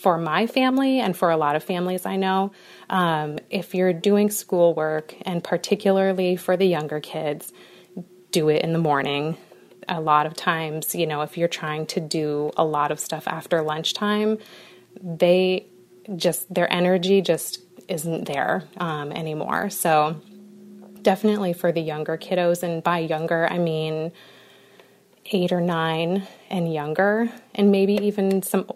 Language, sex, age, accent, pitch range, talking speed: English, female, 30-49, American, 160-195 Hz, 150 wpm